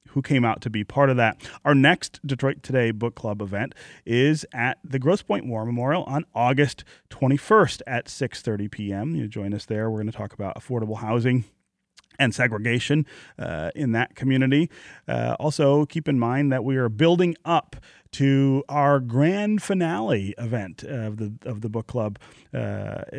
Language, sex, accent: English, male, American